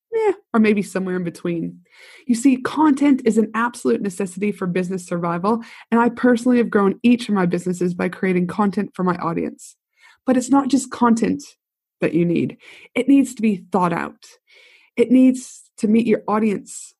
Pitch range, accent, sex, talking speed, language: 190-255 Hz, American, female, 180 wpm, English